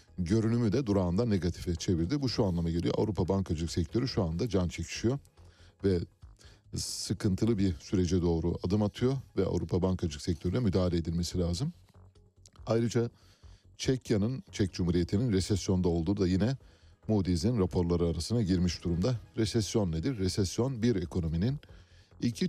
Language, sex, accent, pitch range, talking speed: Turkish, male, native, 85-110 Hz, 130 wpm